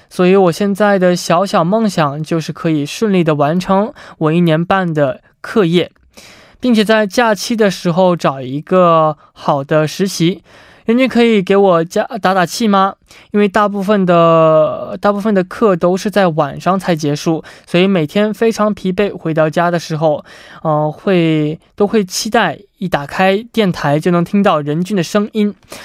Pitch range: 160-205 Hz